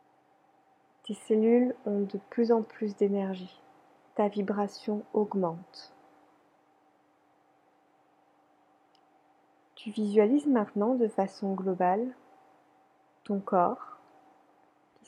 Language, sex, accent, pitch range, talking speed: French, female, French, 200-235 Hz, 80 wpm